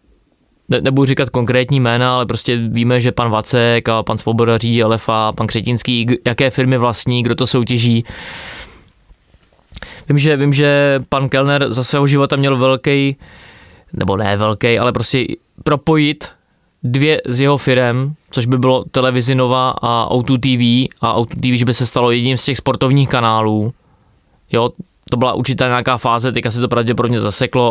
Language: Czech